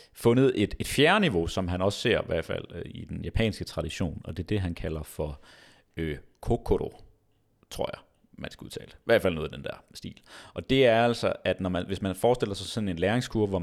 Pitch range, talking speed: 90-115 Hz, 240 wpm